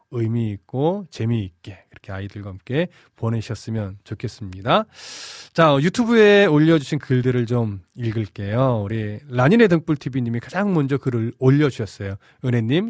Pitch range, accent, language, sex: 115-160 Hz, native, Korean, male